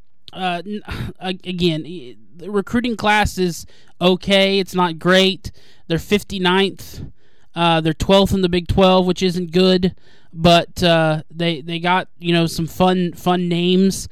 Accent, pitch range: American, 155-180 Hz